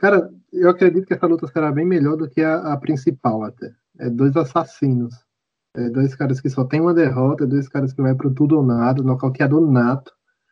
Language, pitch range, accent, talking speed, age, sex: Portuguese, 130-160 Hz, Brazilian, 205 wpm, 20-39, male